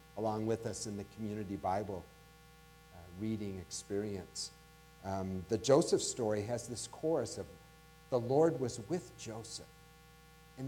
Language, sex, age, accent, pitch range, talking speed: English, male, 50-69, American, 120-160 Hz, 135 wpm